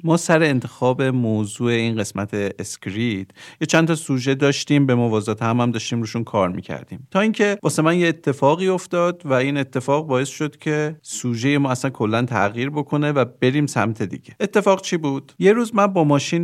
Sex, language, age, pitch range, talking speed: male, Persian, 40-59, 120-180 Hz, 185 wpm